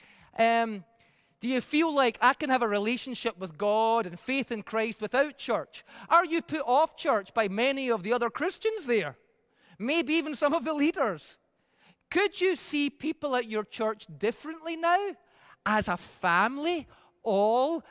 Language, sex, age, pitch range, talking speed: English, male, 30-49, 205-285 Hz, 165 wpm